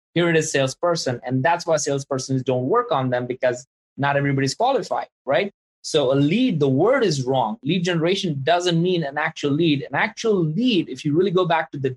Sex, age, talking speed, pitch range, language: male, 20-39, 205 wpm, 140-175 Hz, English